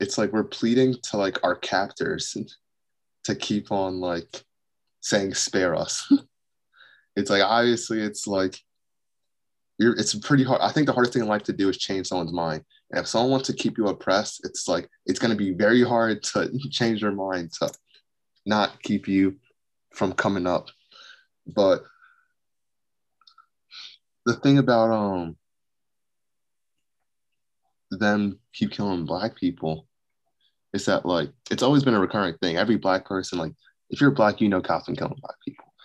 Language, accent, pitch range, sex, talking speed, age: English, American, 90-115 Hz, male, 160 wpm, 20-39